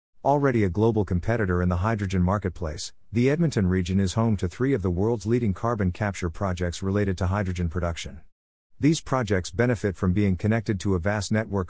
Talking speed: 185 wpm